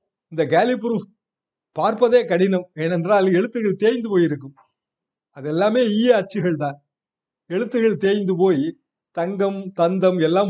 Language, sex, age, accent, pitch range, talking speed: Tamil, male, 60-79, native, 155-195 Hz, 110 wpm